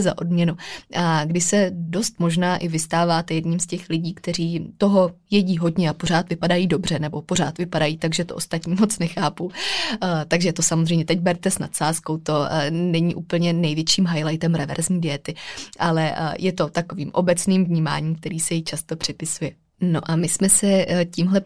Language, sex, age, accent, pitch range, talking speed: Czech, female, 20-39, native, 165-185 Hz, 170 wpm